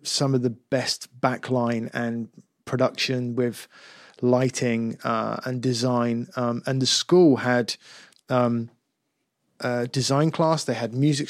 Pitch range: 120-135 Hz